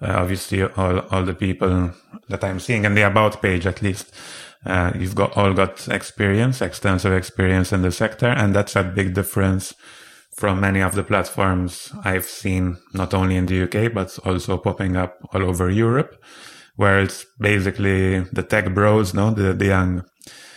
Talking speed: 175 wpm